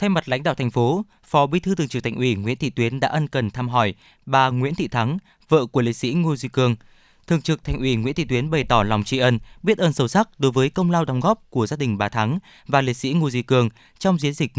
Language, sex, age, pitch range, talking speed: Vietnamese, male, 20-39, 120-160 Hz, 280 wpm